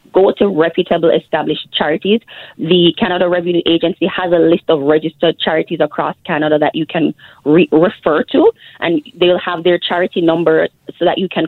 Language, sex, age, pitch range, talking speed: English, female, 20-39, 160-190 Hz, 170 wpm